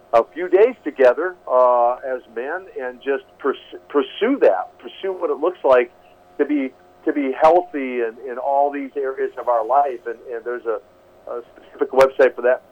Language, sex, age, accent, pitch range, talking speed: English, male, 50-69, American, 115-165 Hz, 180 wpm